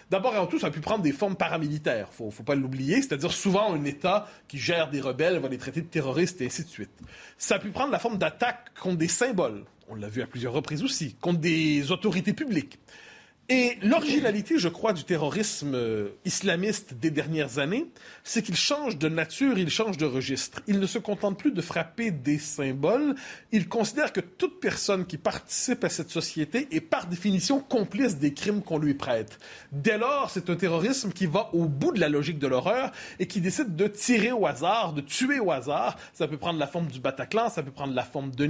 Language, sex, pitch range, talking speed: French, male, 155-215 Hz, 215 wpm